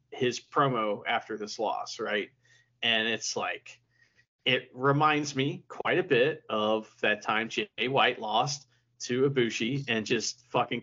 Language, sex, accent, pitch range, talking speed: English, male, American, 120-145 Hz, 145 wpm